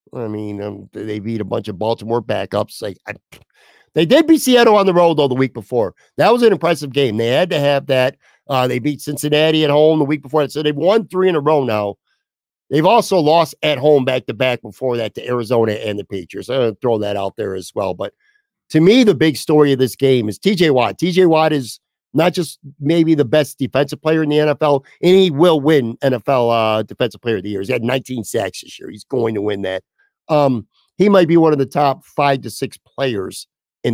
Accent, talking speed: American, 230 wpm